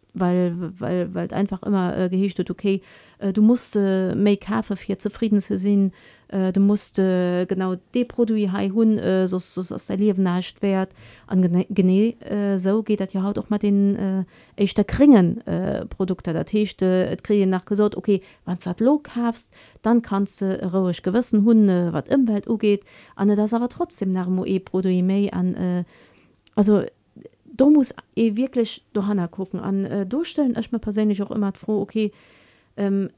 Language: German